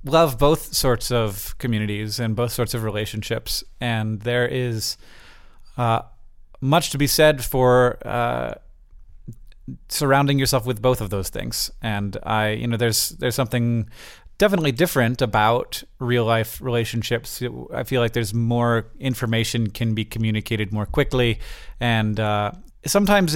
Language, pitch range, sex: English, 110-130 Hz, male